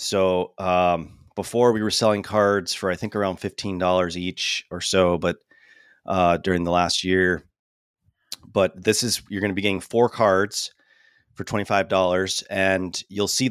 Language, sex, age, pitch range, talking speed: English, male, 30-49, 90-105 Hz, 160 wpm